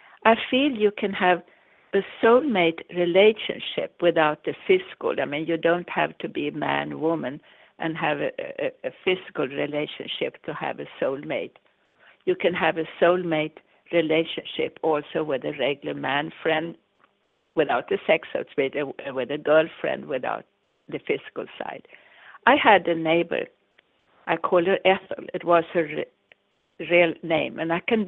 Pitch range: 170-240 Hz